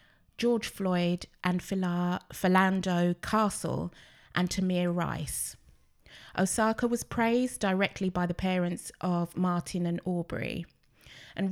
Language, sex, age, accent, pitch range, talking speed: English, female, 20-39, British, 170-195 Hz, 105 wpm